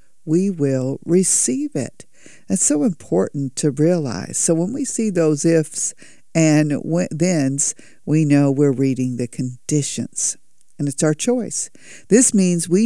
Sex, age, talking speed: female, 50-69, 140 wpm